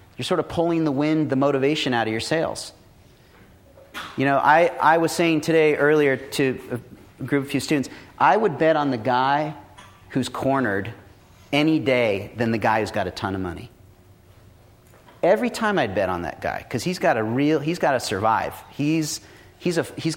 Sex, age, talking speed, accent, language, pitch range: male, 40-59, 185 wpm, American, English, 105-150 Hz